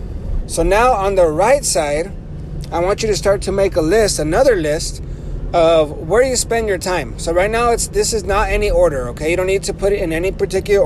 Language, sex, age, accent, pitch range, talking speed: English, male, 30-49, American, 145-190 Hz, 230 wpm